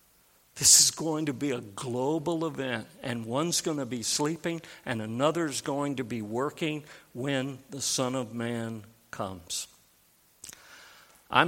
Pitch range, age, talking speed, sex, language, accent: 115-150 Hz, 60-79, 140 wpm, male, English, American